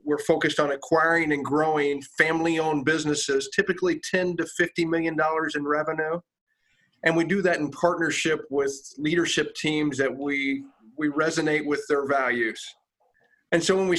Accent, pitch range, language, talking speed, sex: American, 145-170 Hz, English, 155 wpm, male